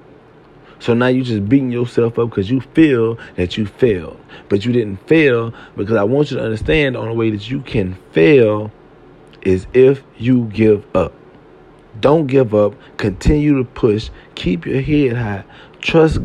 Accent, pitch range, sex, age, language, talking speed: American, 115-140 Hz, male, 40-59, English, 170 wpm